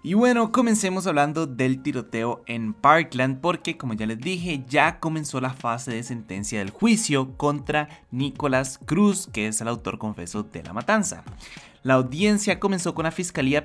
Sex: male